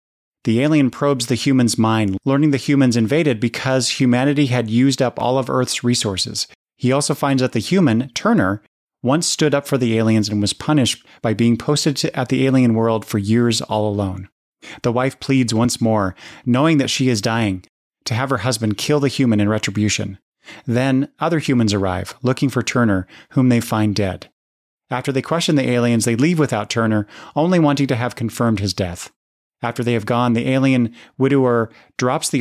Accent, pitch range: American, 110-135 Hz